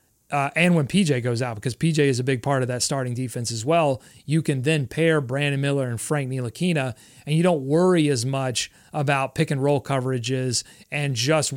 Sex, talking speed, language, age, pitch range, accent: male, 205 wpm, English, 30-49, 130-155 Hz, American